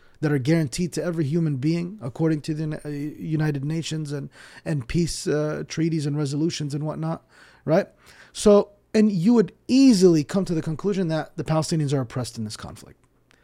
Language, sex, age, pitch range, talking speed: English, male, 30-49, 145-210 Hz, 175 wpm